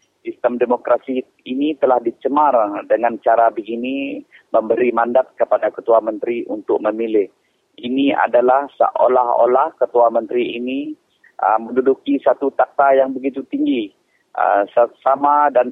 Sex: male